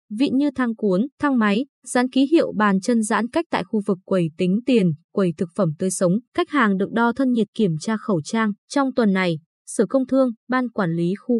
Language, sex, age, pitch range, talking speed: Vietnamese, female, 20-39, 190-255 Hz, 230 wpm